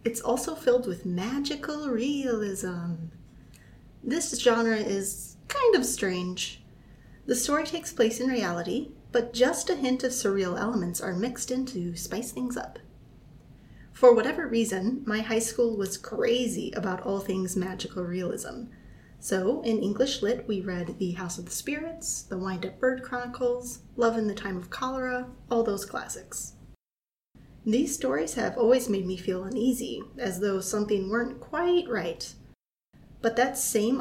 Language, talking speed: English, 150 wpm